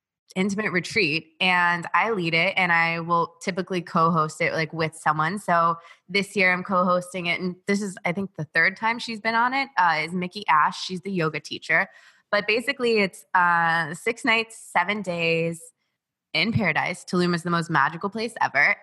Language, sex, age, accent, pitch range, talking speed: English, female, 20-39, American, 165-200 Hz, 185 wpm